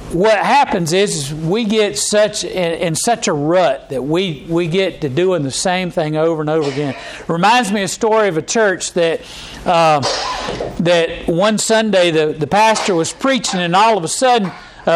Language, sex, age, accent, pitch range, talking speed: English, male, 50-69, American, 170-215 Hz, 200 wpm